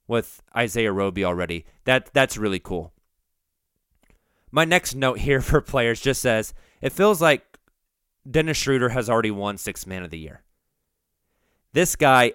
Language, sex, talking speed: English, male, 150 wpm